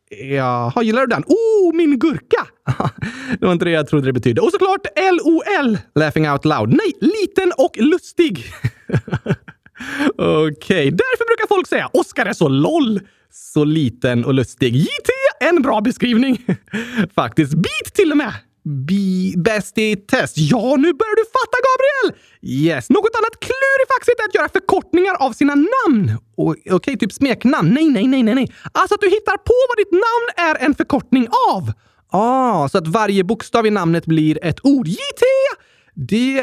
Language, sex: Swedish, male